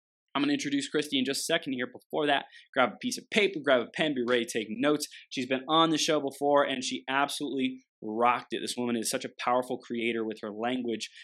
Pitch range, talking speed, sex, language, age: 110-155 Hz, 240 wpm, male, English, 20-39